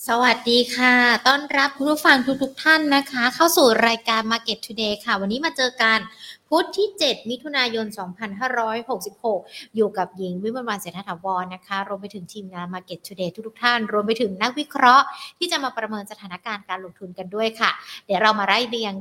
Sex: female